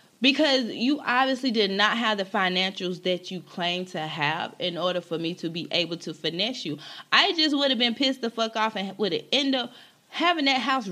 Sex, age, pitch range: female, 20-39, 185-240 Hz